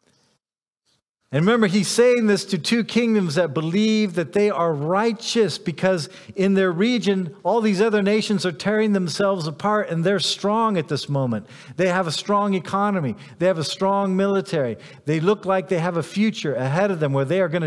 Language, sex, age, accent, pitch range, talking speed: English, male, 50-69, American, 130-195 Hz, 190 wpm